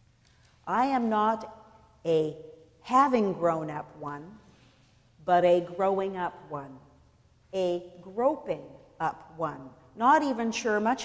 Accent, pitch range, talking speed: American, 160-235 Hz, 90 wpm